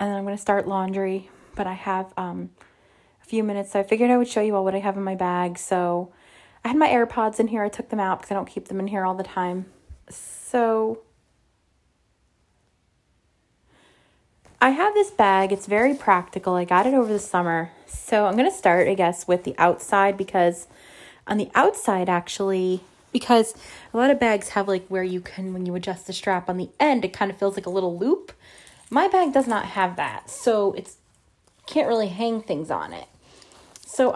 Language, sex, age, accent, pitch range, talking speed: English, female, 20-39, American, 185-225 Hz, 210 wpm